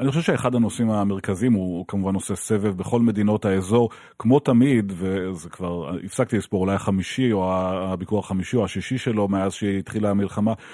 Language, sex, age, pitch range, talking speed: Hebrew, male, 30-49, 95-110 Hz, 160 wpm